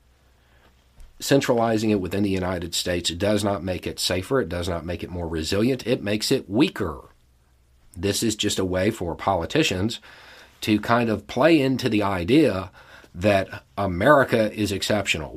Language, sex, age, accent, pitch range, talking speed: English, male, 50-69, American, 80-105 Hz, 160 wpm